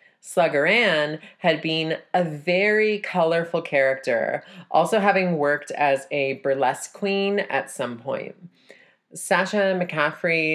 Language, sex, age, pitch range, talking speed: English, female, 30-49, 145-185 Hz, 115 wpm